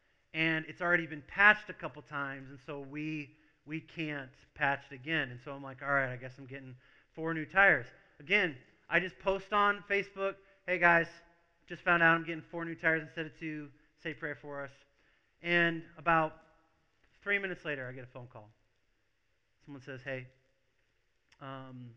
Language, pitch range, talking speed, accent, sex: English, 120-160 Hz, 180 wpm, American, male